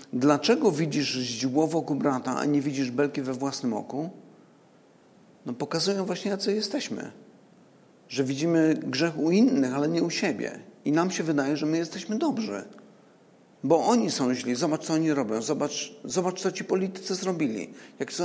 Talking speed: 165 wpm